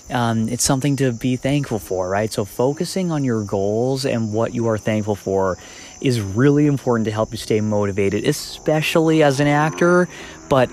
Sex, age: male, 20-39